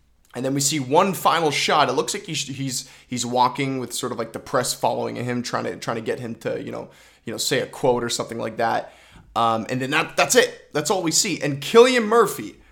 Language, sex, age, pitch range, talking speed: English, male, 20-39, 120-150 Hz, 250 wpm